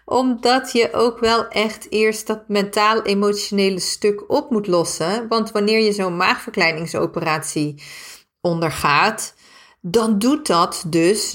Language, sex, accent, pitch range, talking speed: Dutch, female, Dutch, 160-215 Hz, 115 wpm